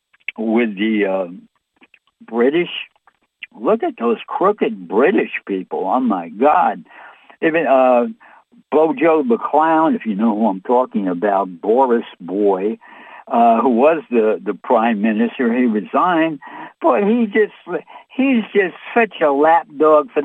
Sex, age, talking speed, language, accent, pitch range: male, 60-79, 130 wpm, English, American, 140-230 Hz